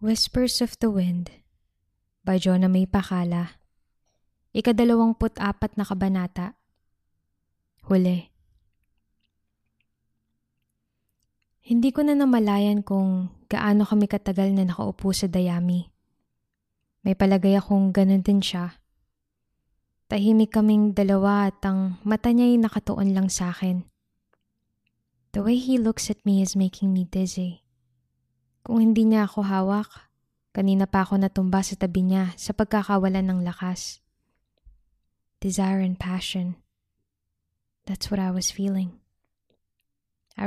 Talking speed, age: 115 wpm, 20-39